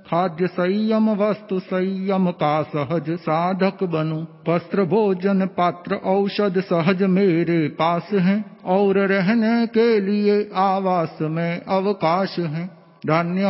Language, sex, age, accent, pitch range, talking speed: Hindi, male, 50-69, native, 170-205 Hz, 110 wpm